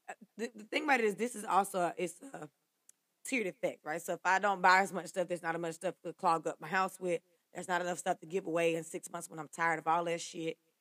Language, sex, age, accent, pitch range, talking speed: English, female, 20-39, American, 170-225 Hz, 280 wpm